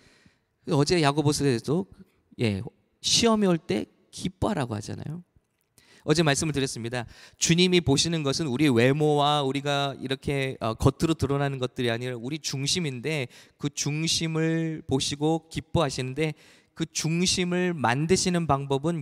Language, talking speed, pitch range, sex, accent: English, 95 wpm, 135-175 Hz, male, Korean